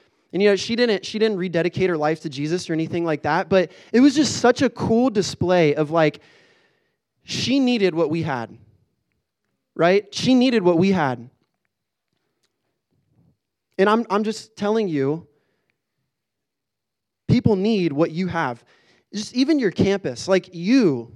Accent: American